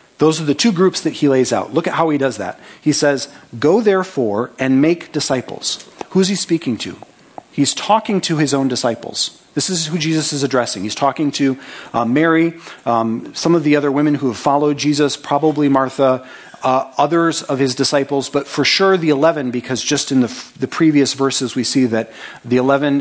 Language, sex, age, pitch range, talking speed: English, male, 40-59, 125-155 Hz, 200 wpm